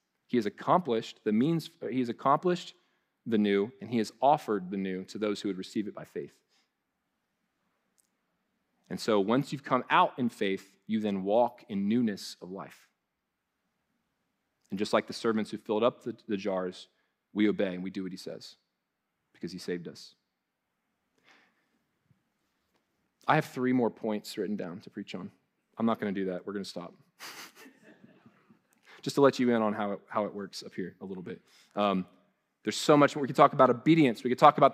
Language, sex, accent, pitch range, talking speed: English, male, American, 105-155 Hz, 185 wpm